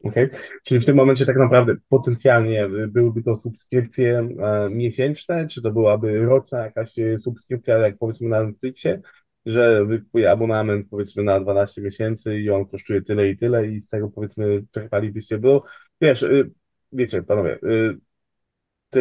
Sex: male